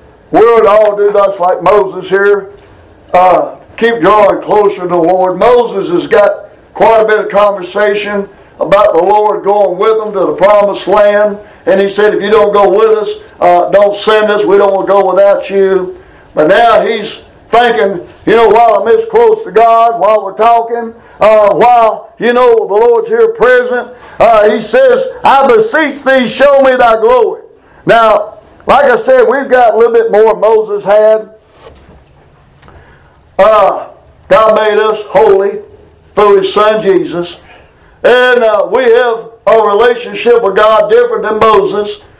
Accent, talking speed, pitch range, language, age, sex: American, 165 wpm, 205-280 Hz, English, 60-79, male